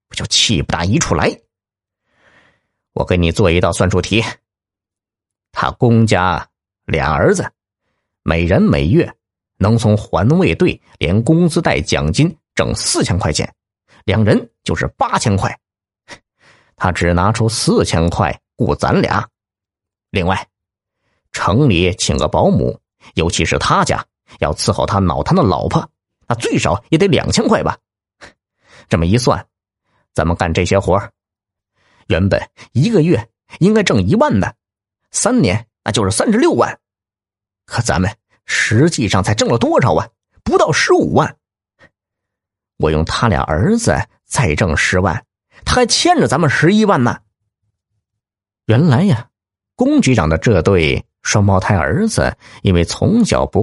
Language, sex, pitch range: Chinese, male, 95-110 Hz